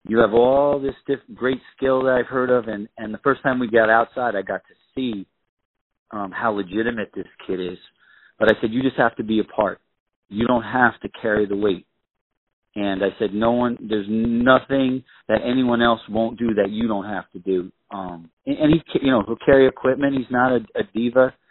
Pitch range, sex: 105-130 Hz, male